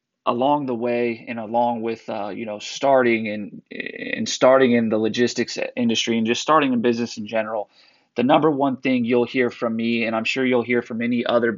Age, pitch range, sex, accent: 30-49, 115-130 Hz, male, American